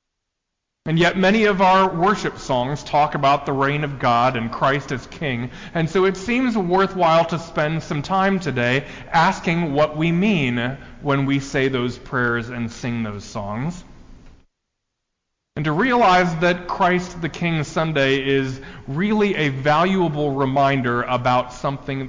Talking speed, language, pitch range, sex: 150 wpm, English, 120-165 Hz, male